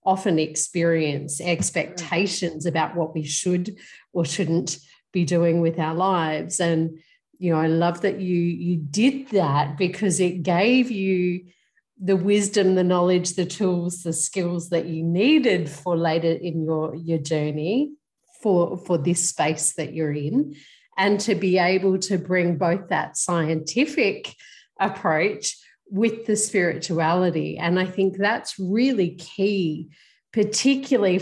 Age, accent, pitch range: 40-59, Australian, 170-205 Hz